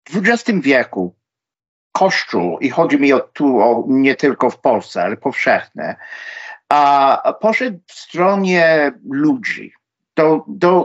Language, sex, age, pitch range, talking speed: Polish, male, 50-69, 140-215 Hz, 135 wpm